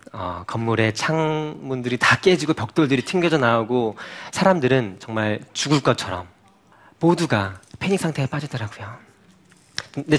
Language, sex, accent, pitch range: Korean, male, native, 110-155 Hz